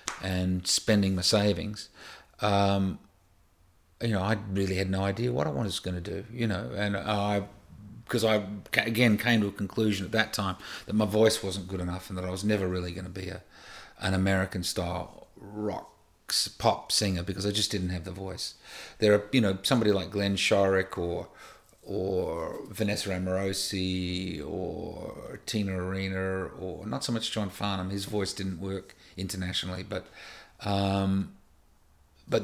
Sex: male